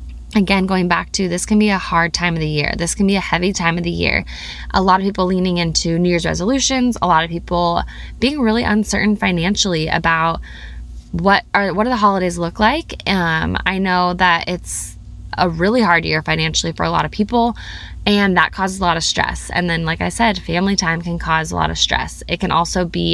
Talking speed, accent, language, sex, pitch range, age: 225 wpm, American, English, female, 170-200 Hz, 20-39